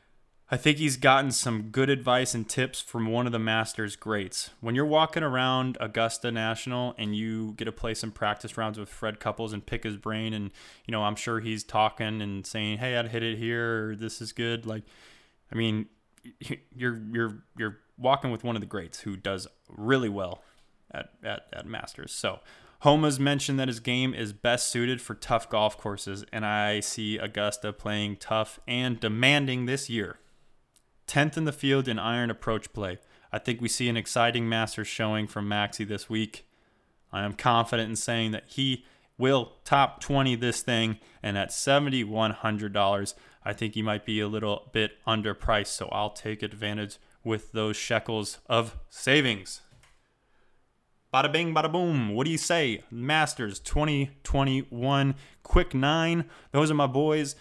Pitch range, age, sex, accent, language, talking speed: 105-130 Hz, 20-39, male, American, English, 175 wpm